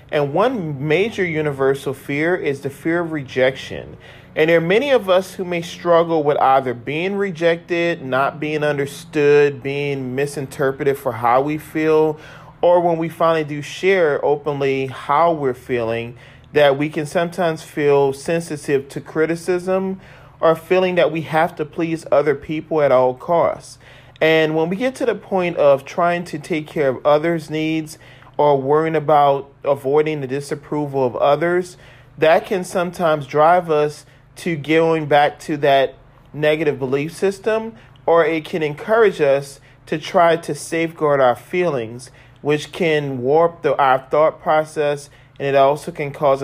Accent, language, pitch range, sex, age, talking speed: American, English, 140-165 Hz, male, 40-59, 155 wpm